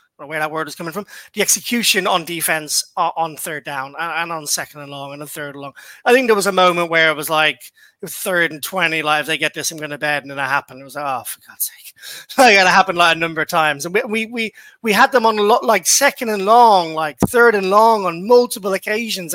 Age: 30-49